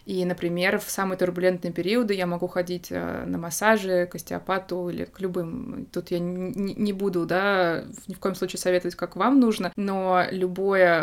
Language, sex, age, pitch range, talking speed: Russian, female, 20-39, 175-195 Hz, 175 wpm